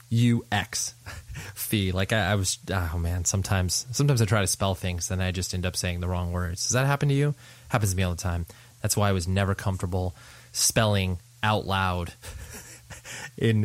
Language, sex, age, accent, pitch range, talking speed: English, male, 20-39, American, 95-125 Hz, 200 wpm